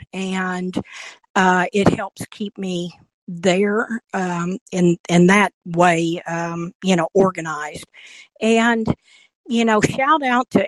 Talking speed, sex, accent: 125 wpm, female, American